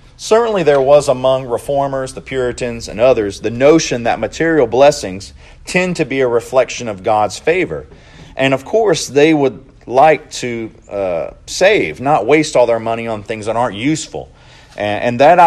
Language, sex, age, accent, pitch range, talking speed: English, male, 40-59, American, 115-150 Hz, 170 wpm